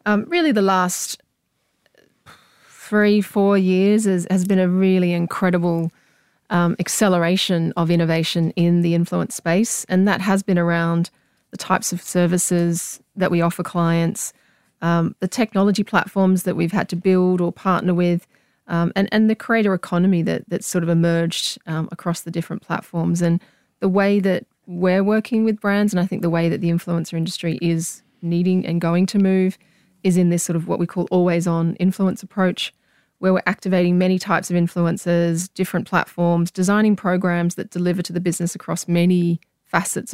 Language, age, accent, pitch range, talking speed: English, 30-49, Australian, 170-190 Hz, 170 wpm